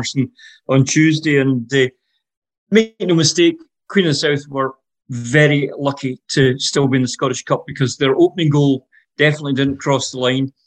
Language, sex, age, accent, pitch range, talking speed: English, male, 40-59, British, 130-145 Hz, 170 wpm